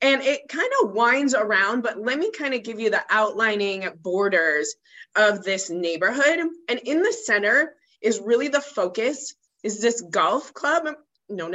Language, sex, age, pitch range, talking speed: English, female, 20-39, 185-240 Hz, 165 wpm